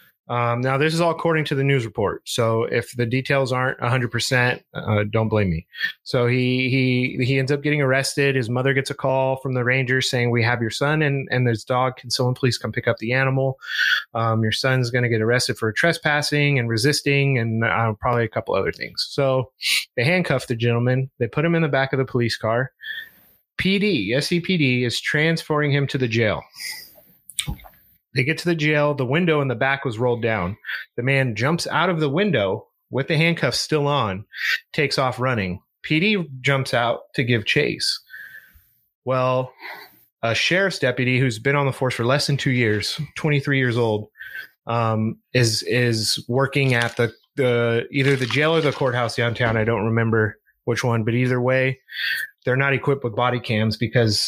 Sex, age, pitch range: male, 30-49, 120-140 Hz